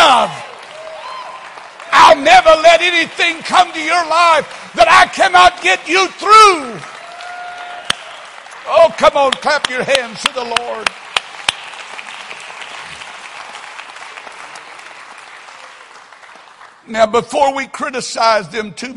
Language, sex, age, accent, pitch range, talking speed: English, male, 60-79, American, 210-320 Hz, 95 wpm